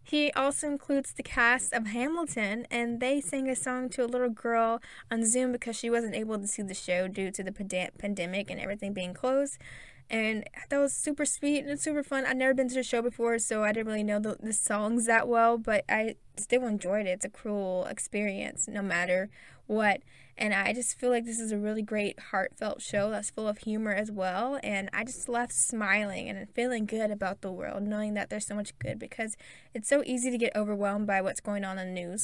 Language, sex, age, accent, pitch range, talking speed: English, female, 10-29, American, 205-255 Hz, 225 wpm